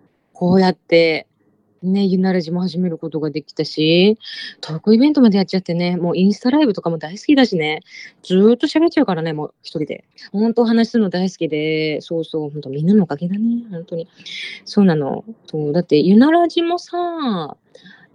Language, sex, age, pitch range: Japanese, female, 20-39, 160-225 Hz